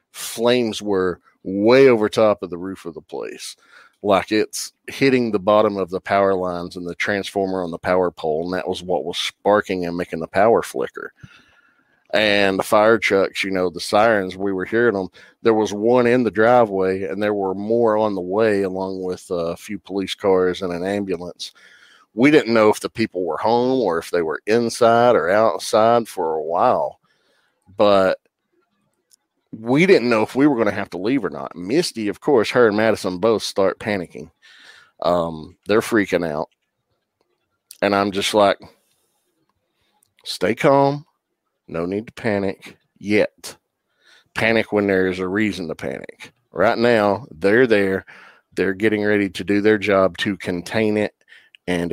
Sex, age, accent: male, 40-59, American